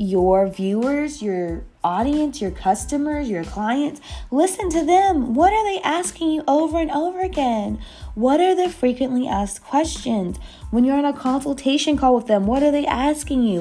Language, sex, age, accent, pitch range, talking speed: English, female, 20-39, American, 200-290 Hz, 170 wpm